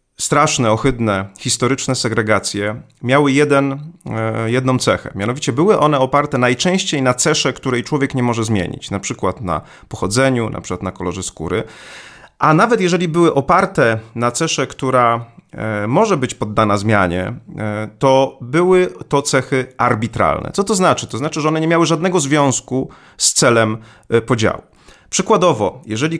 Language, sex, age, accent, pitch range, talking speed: Polish, male, 30-49, native, 110-145 Hz, 140 wpm